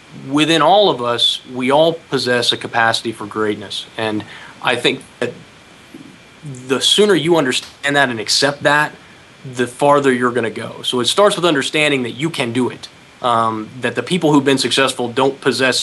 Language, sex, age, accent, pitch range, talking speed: English, male, 30-49, American, 120-145 Hz, 180 wpm